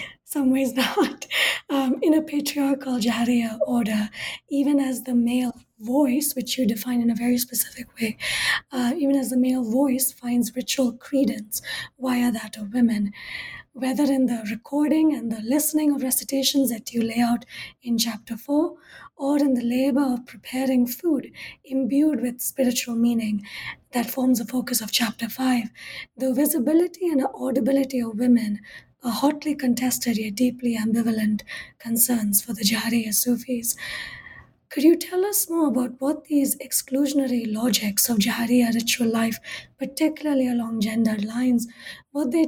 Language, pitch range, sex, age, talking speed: English, 230-275 Hz, female, 20-39, 150 wpm